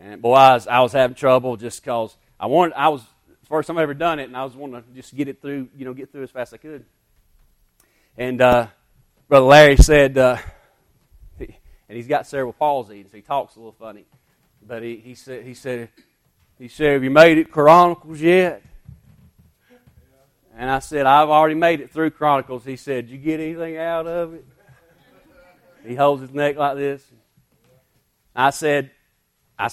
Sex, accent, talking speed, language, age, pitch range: male, American, 200 wpm, English, 30-49, 120-150 Hz